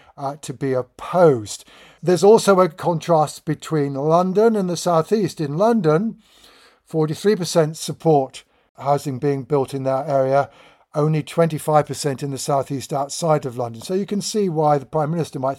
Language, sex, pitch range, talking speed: English, male, 135-160 Hz, 160 wpm